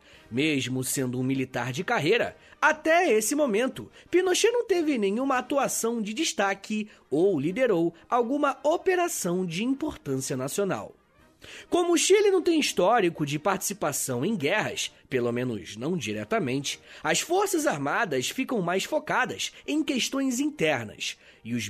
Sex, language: male, Portuguese